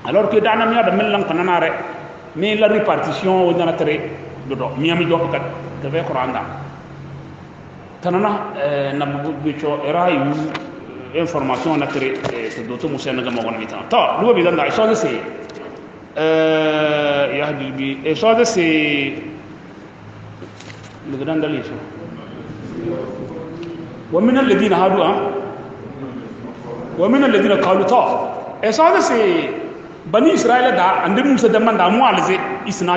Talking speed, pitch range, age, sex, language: 45 wpm, 155-230 Hz, 40-59, male, English